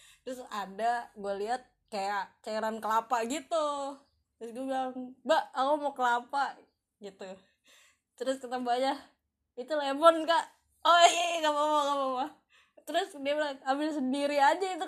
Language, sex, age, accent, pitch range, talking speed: Indonesian, female, 20-39, native, 235-340 Hz, 135 wpm